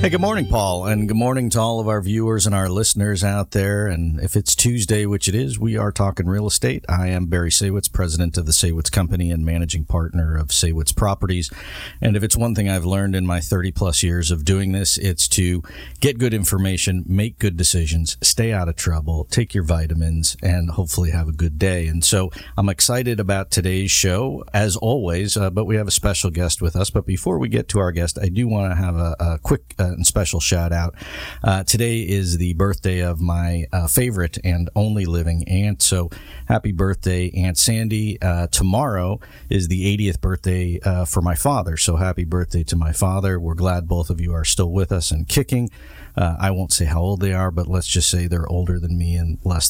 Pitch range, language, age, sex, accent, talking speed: 85-105 Hz, English, 50-69, male, American, 215 wpm